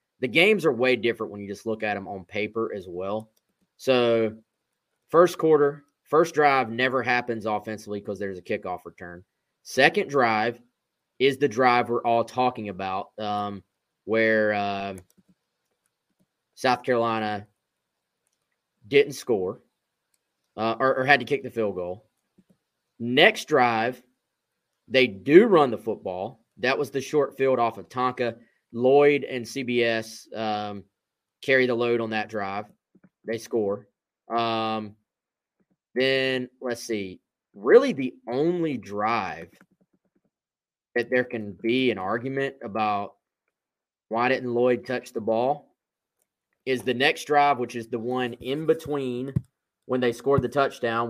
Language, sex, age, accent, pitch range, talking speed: English, male, 30-49, American, 110-135 Hz, 135 wpm